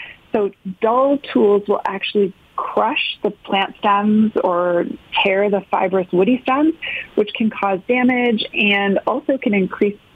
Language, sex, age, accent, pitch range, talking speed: English, female, 30-49, American, 190-255 Hz, 135 wpm